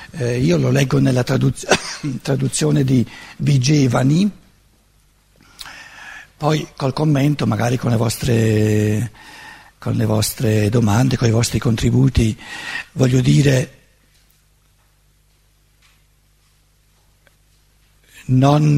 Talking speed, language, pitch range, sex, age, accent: 85 wpm, Italian, 125-155 Hz, male, 60-79, native